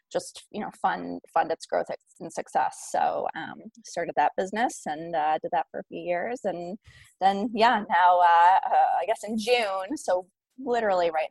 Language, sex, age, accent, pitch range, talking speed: English, female, 20-39, American, 165-225 Hz, 185 wpm